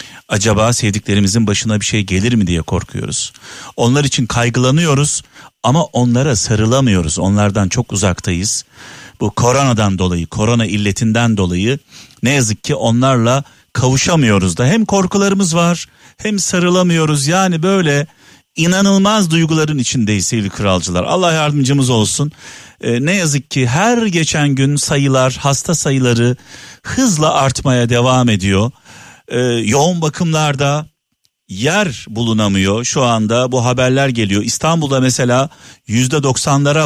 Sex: male